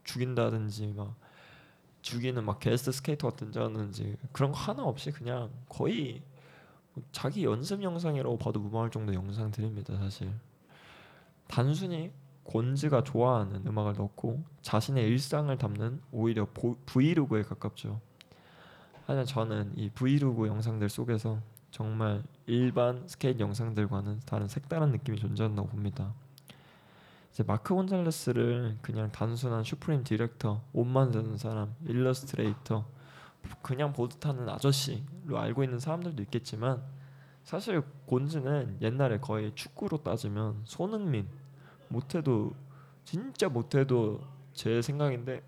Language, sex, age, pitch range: Korean, male, 20-39, 110-140 Hz